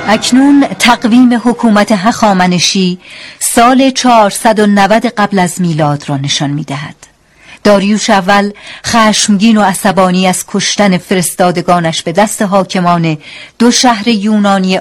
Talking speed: 105 wpm